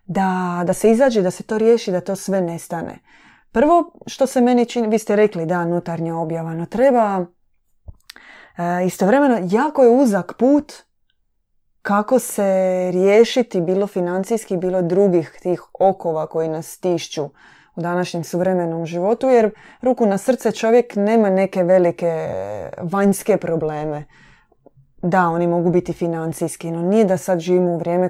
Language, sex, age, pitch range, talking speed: Croatian, female, 20-39, 170-200 Hz, 145 wpm